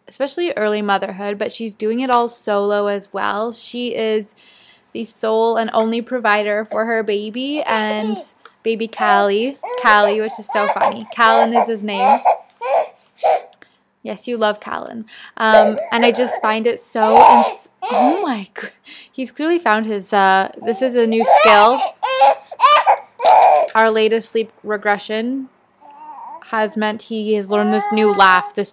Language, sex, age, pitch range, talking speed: English, female, 20-39, 210-255 Hz, 140 wpm